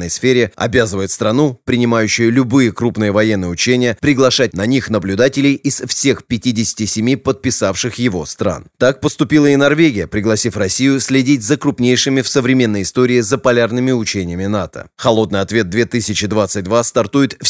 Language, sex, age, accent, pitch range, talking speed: Russian, male, 30-49, native, 105-130 Hz, 135 wpm